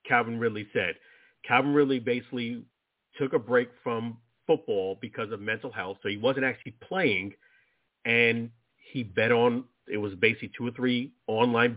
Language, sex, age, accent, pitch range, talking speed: English, male, 40-59, American, 110-130 Hz, 160 wpm